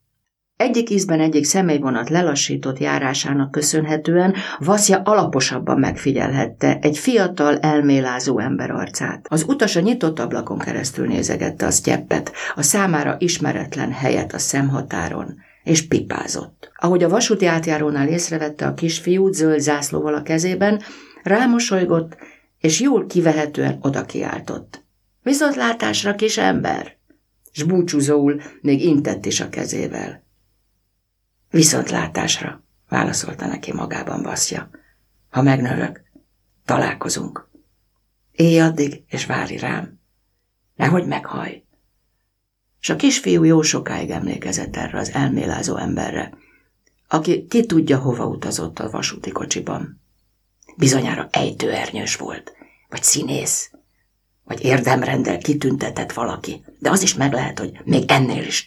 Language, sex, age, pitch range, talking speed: Hungarian, female, 50-69, 130-175 Hz, 110 wpm